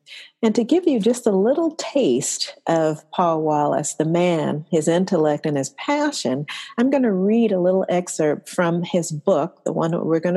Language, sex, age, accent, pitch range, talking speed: English, female, 50-69, American, 165-215 Hz, 190 wpm